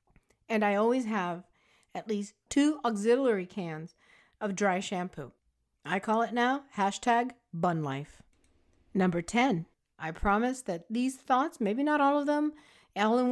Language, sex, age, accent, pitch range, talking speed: English, female, 50-69, American, 180-250 Hz, 150 wpm